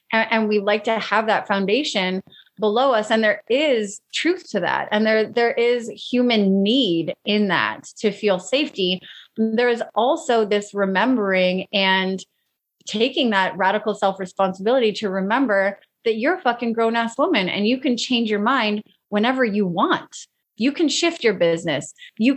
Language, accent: English, American